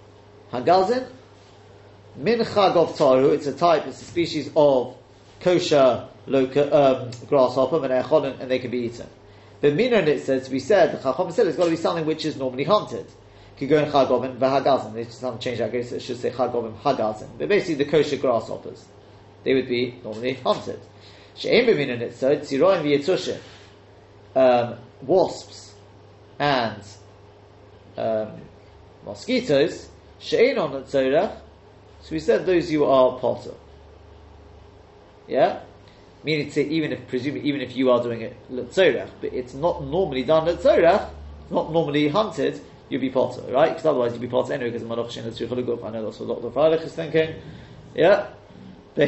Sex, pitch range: male, 105-155 Hz